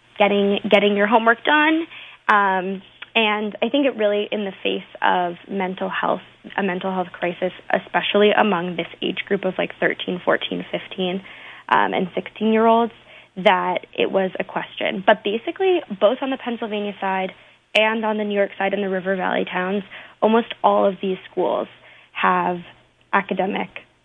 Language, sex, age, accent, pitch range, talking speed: English, female, 20-39, American, 185-215 Hz, 165 wpm